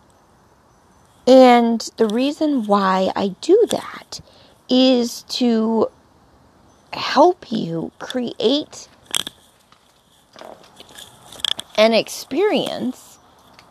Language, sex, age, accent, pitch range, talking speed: English, female, 30-49, American, 205-250 Hz, 60 wpm